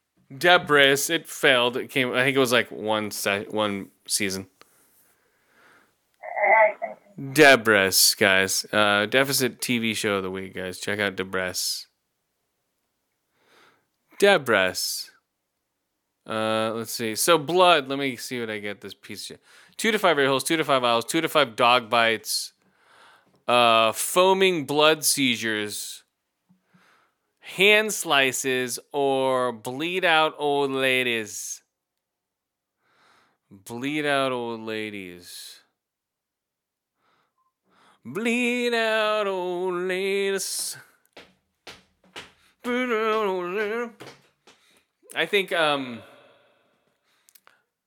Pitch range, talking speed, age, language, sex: 110-165 Hz, 105 wpm, 20-39, English, male